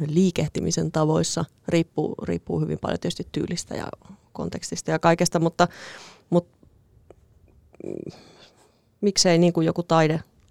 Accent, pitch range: native, 135-170 Hz